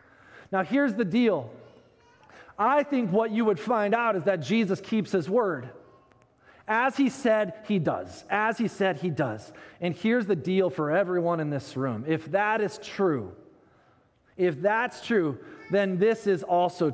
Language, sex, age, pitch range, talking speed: English, male, 30-49, 165-225 Hz, 165 wpm